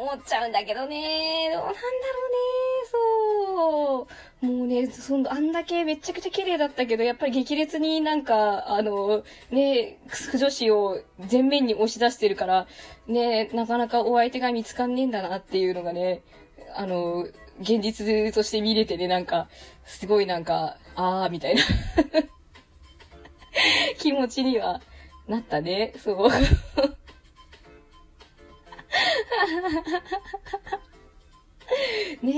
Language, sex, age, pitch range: Japanese, female, 20-39, 205-310 Hz